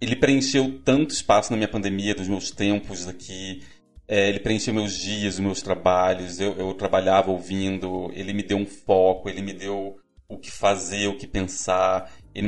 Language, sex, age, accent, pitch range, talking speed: Portuguese, male, 30-49, Brazilian, 95-110 Hz, 180 wpm